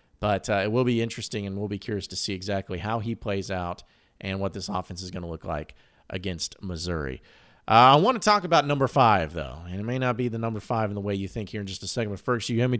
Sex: male